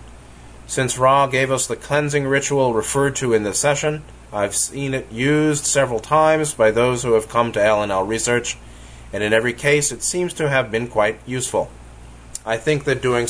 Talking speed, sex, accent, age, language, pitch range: 190 wpm, male, American, 30-49, English, 110-135 Hz